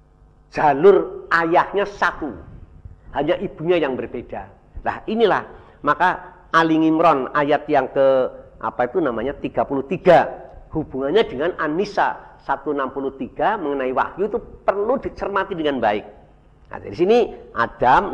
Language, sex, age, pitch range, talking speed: Indonesian, male, 50-69, 135-190 Hz, 115 wpm